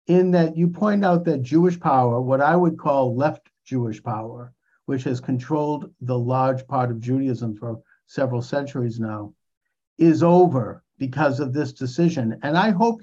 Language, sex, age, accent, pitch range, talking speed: English, male, 50-69, American, 135-180 Hz, 165 wpm